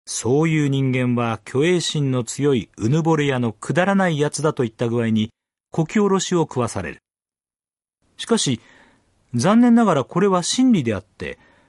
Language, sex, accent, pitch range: Japanese, male, native, 120-200 Hz